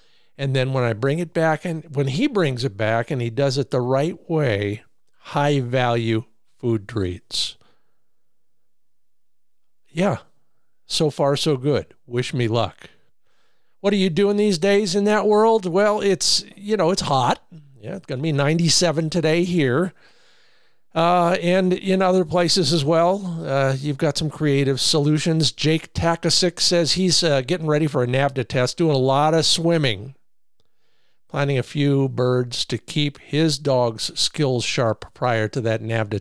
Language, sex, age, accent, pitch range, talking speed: English, male, 50-69, American, 130-170 Hz, 160 wpm